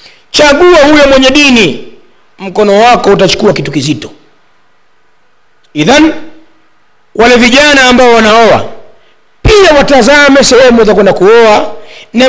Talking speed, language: 100 wpm, Swahili